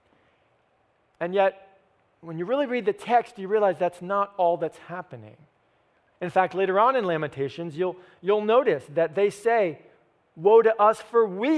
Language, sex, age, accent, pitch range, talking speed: English, male, 40-59, American, 165-220 Hz, 165 wpm